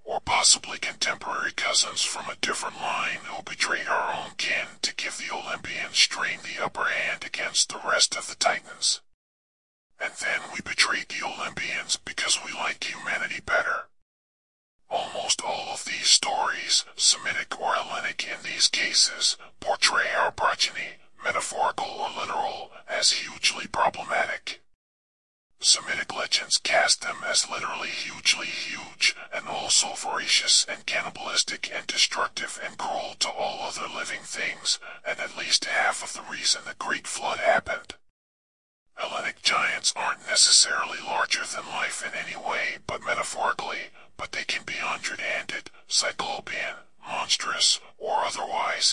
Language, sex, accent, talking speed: English, female, American, 135 wpm